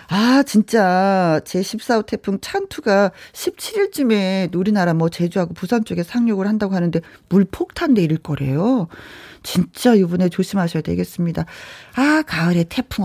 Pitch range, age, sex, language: 180-250 Hz, 40-59, female, Korean